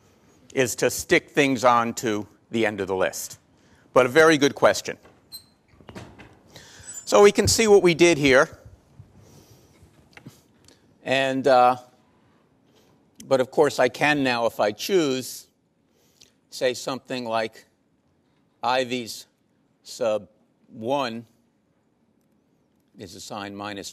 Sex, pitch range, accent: male, 110-150 Hz, American